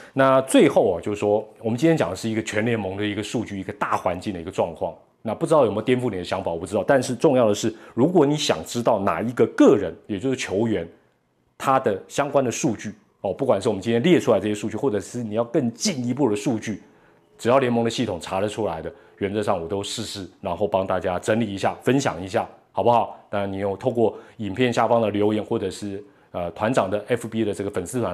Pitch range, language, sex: 105-130 Hz, Chinese, male